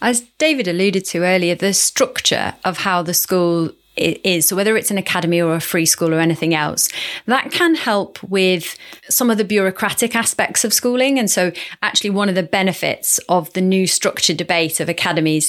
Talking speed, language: 195 wpm, English